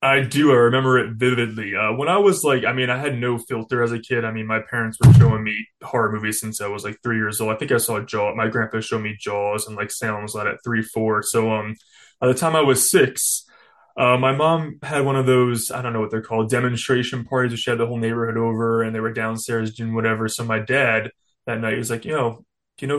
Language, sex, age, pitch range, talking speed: English, male, 20-39, 115-130 Hz, 265 wpm